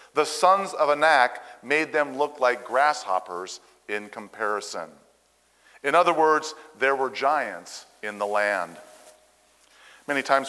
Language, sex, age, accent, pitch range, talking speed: English, male, 50-69, American, 120-165 Hz, 125 wpm